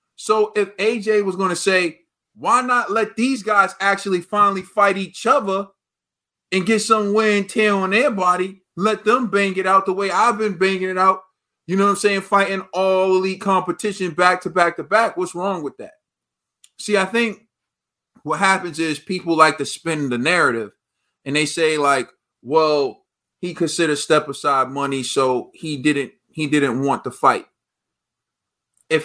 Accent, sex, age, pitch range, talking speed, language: American, male, 20-39, 155-200 Hz, 180 wpm, English